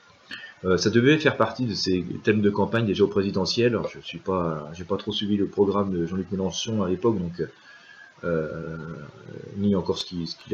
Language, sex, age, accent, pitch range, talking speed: French, male, 30-49, French, 95-130 Hz, 195 wpm